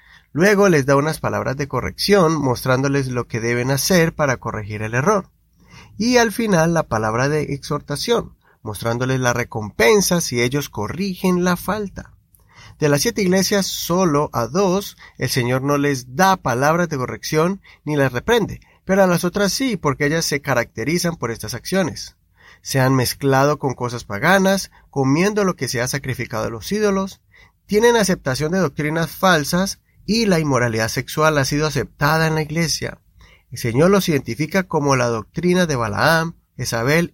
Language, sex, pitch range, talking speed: Spanish, male, 125-185 Hz, 165 wpm